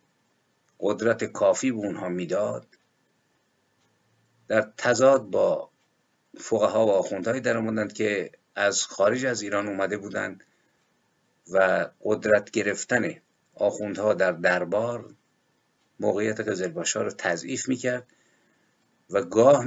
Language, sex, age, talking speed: Persian, male, 50-69, 105 wpm